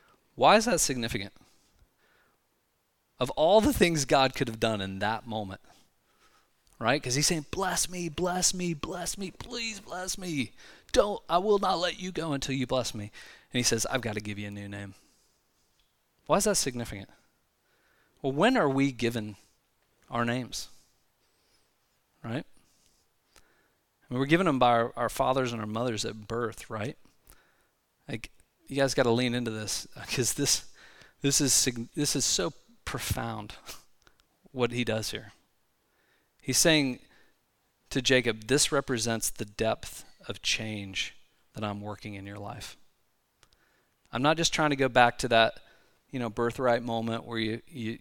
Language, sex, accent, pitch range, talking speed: English, male, American, 110-140 Hz, 155 wpm